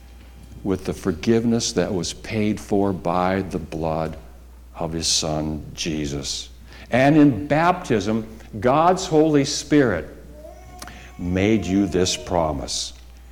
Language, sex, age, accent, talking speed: English, male, 60-79, American, 110 wpm